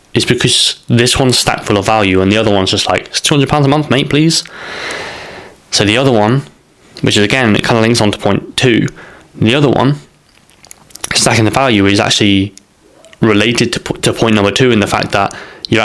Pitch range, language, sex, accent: 100-120 Hz, English, male, British